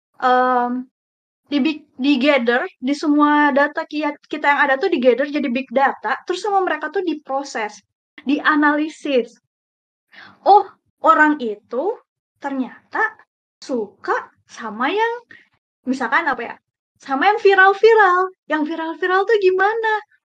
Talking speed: 115 wpm